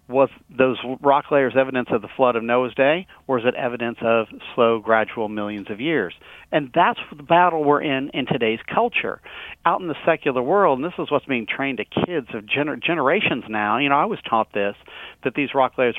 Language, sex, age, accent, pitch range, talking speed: English, male, 50-69, American, 110-140 Hz, 215 wpm